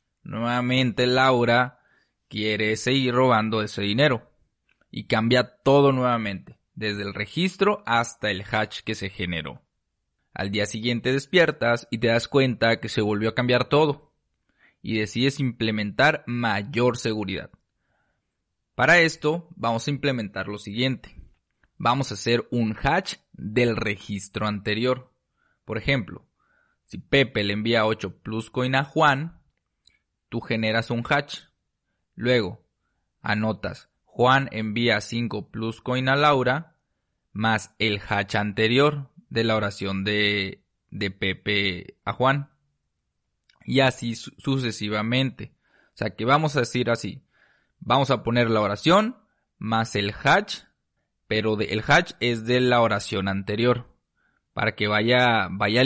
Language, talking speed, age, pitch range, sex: Spanish, 130 wpm, 20-39, 105-130 Hz, male